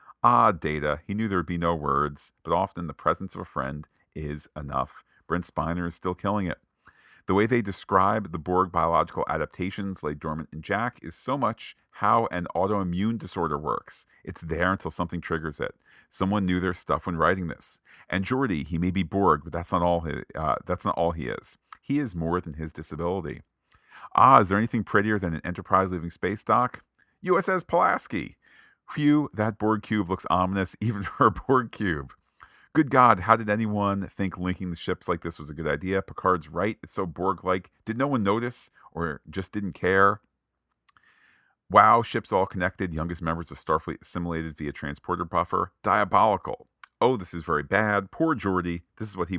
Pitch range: 80-100 Hz